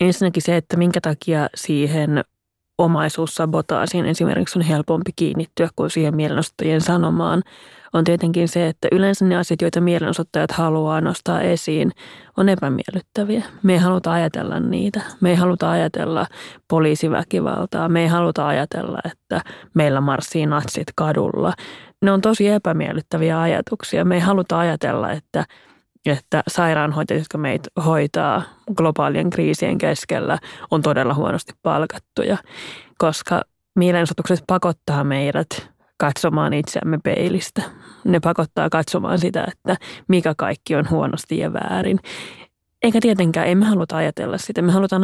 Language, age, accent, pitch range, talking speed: Finnish, 30-49, native, 155-180 Hz, 130 wpm